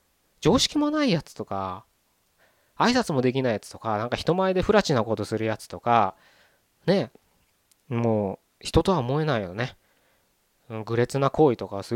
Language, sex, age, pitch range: Japanese, male, 20-39, 110-165 Hz